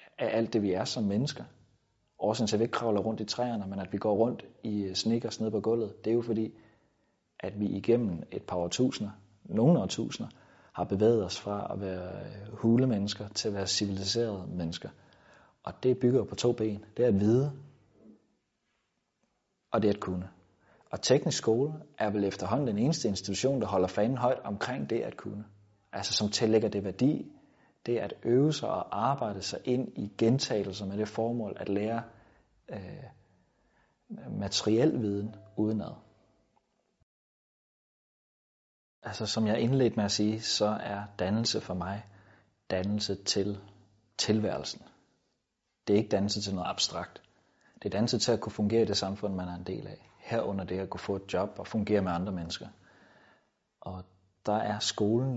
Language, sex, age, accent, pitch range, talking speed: Danish, male, 30-49, native, 100-115 Hz, 175 wpm